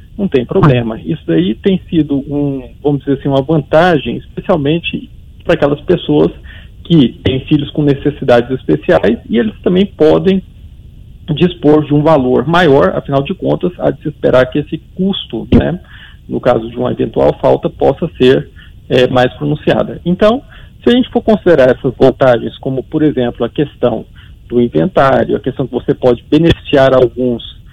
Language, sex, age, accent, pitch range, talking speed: English, male, 40-59, Brazilian, 125-160 Hz, 155 wpm